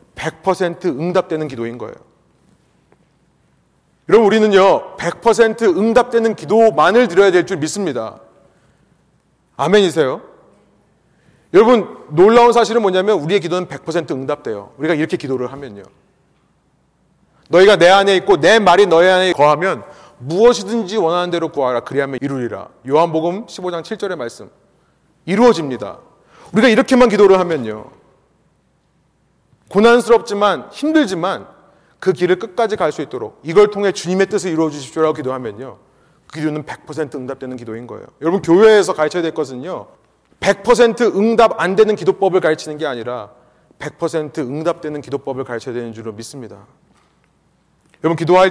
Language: Korean